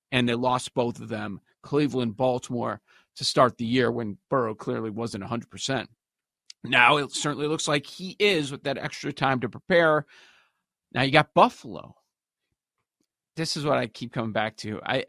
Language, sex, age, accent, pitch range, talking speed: English, male, 40-59, American, 120-160 Hz, 170 wpm